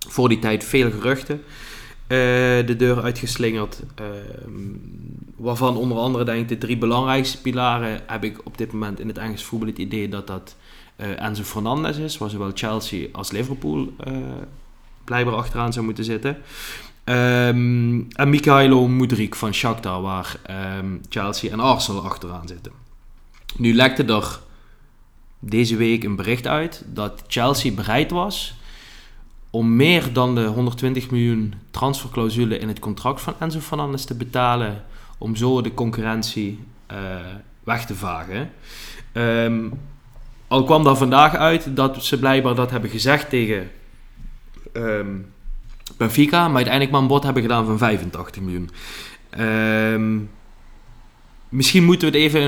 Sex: male